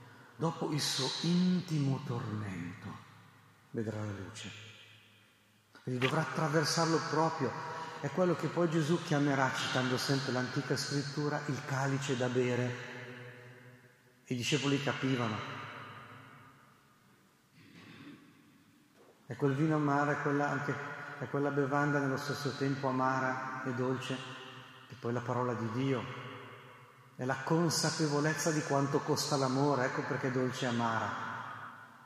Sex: male